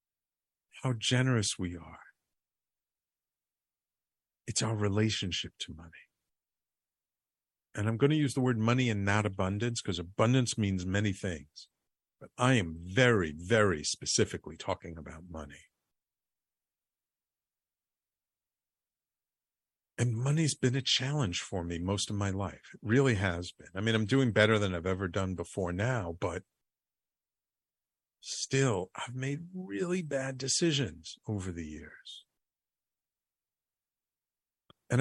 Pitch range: 95-125 Hz